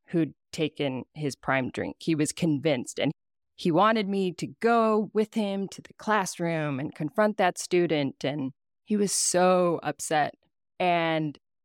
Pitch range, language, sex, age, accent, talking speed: 150-195 Hz, English, female, 20-39, American, 150 wpm